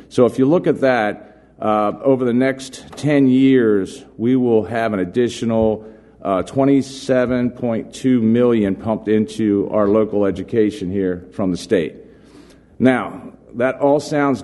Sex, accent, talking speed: male, American, 135 wpm